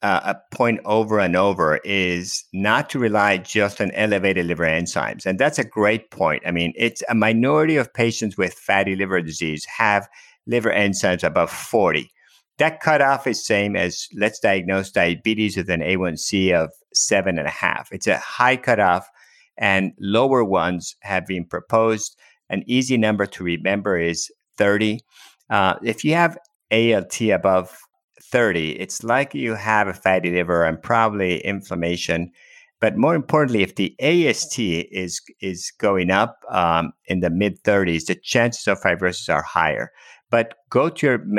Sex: male